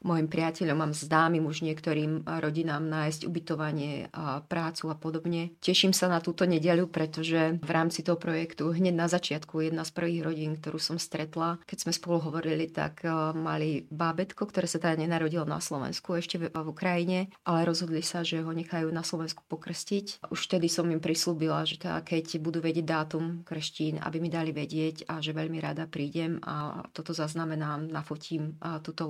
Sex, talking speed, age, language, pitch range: female, 175 wpm, 30-49, Slovak, 155-170 Hz